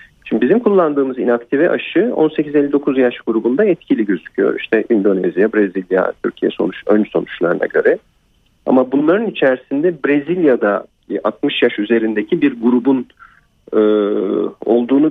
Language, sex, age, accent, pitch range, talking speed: Turkish, male, 40-59, native, 110-145 Hz, 115 wpm